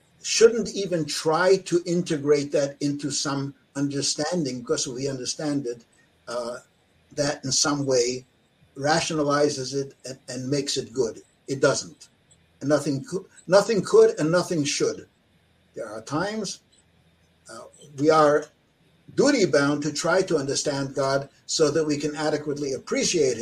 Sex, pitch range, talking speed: male, 135-165 Hz, 130 wpm